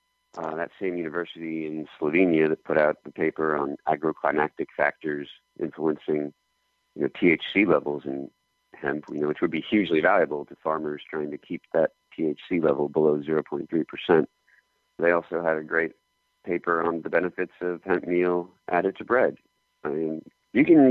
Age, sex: 40-59, male